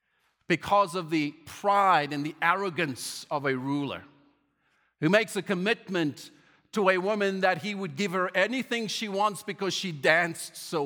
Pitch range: 150-190 Hz